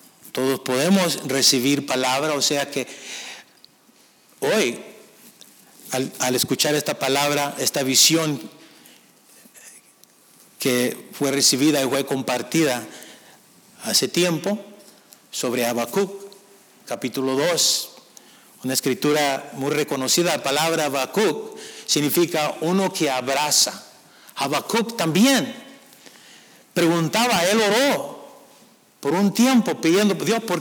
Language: Spanish